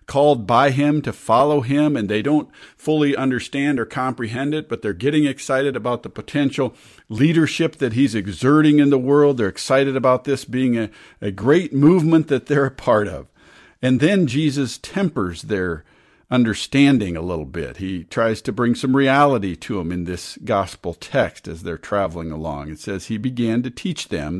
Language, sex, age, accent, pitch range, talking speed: English, male, 50-69, American, 100-145 Hz, 180 wpm